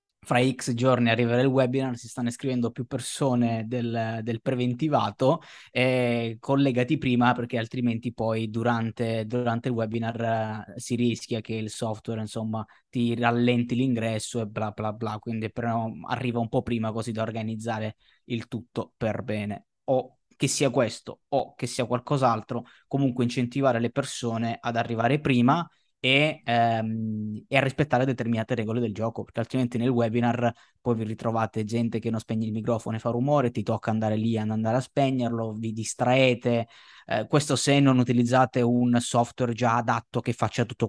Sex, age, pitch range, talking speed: male, 20-39, 110-125 Hz, 165 wpm